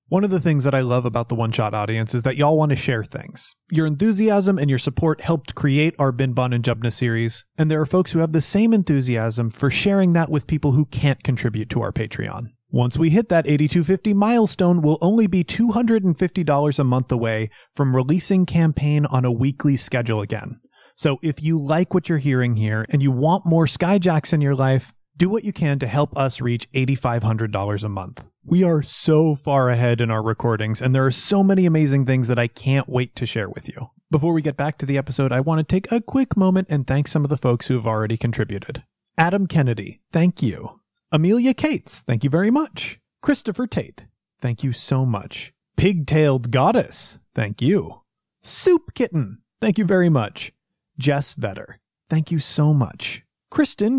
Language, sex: English, male